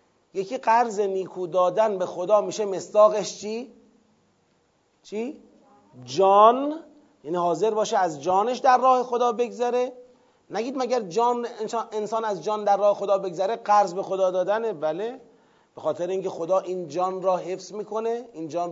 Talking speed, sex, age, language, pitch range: 145 wpm, male, 30-49, Persian, 175-225 Hz